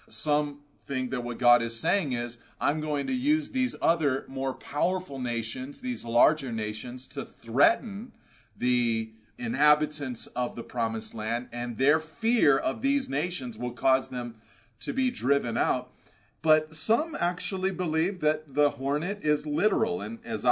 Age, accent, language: 30-49, American, English